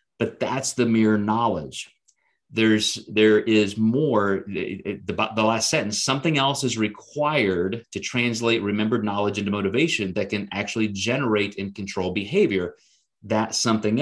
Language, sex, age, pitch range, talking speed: English, male, 30-49, 105-130 Hz, 145 wpm